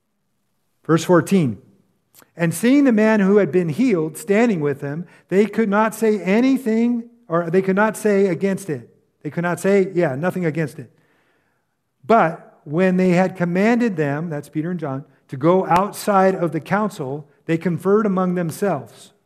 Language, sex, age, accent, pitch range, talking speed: English, male, 50-69, American, 155-205 Hz, 165 wpm